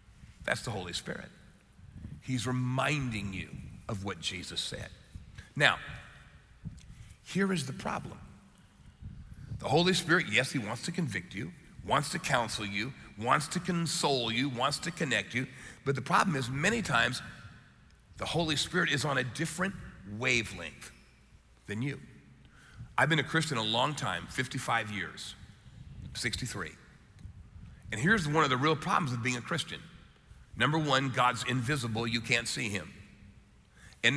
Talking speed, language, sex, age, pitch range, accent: 145 wpm, English, male, 40-59, 115-155 Hz, American